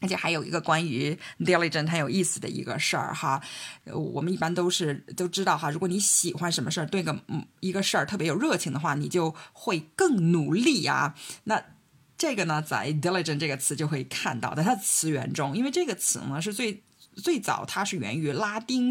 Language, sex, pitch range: Chinese, female, 160-230 Hz